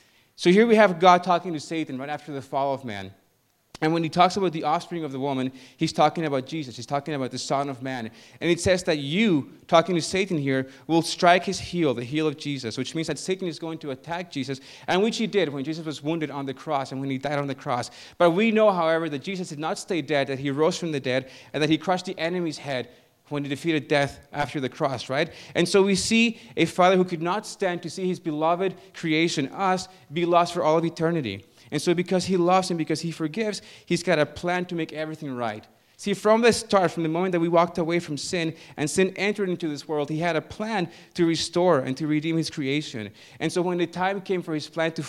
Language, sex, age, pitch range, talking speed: English, male, 30-49, 140-175 Hz, 250 wpm